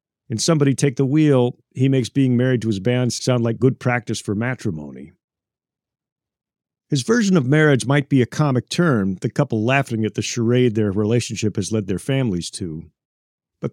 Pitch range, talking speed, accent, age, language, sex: 110-140 Hz, 180 wpm, American, 50-69, English, male